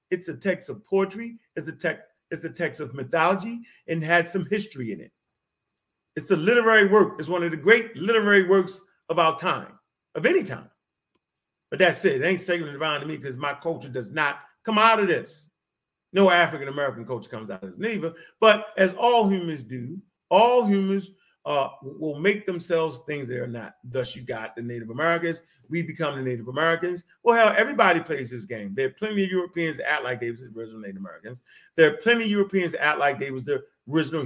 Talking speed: 210 wpm